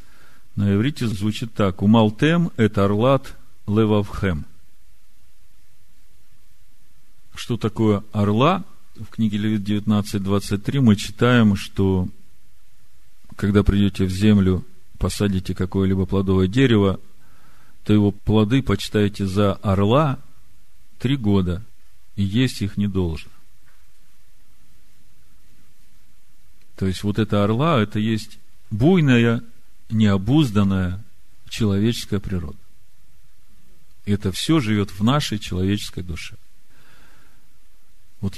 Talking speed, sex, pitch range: 90 wpm, male, 90-110 Hz